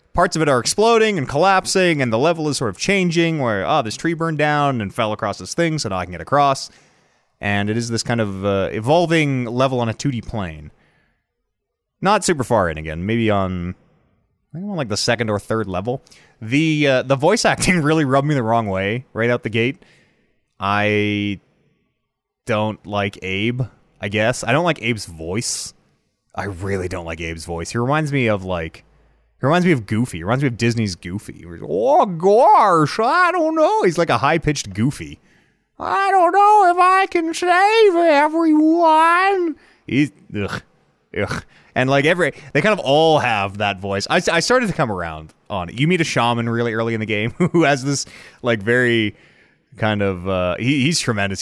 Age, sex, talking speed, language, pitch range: 20-39, male, 195 wpm, English, 100-165 Hz